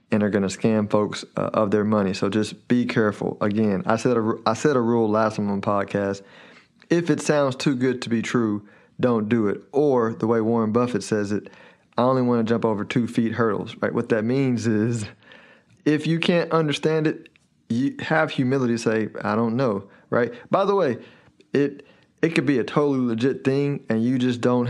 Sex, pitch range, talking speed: male, 110-135 Hz, 215 wpm